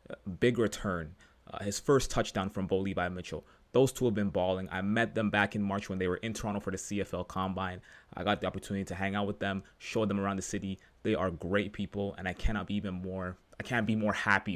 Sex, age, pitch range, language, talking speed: male, 20-39, 95-110 Hz, English, 245 wpm